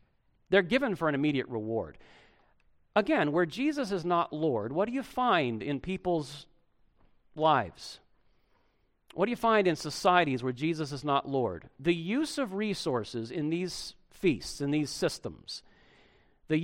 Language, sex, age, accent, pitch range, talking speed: English, male, 50-69, American, 150-235 Hz, 150 wpm